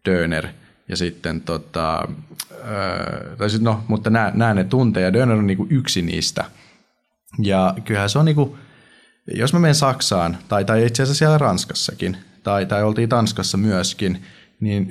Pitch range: 95-115 Hz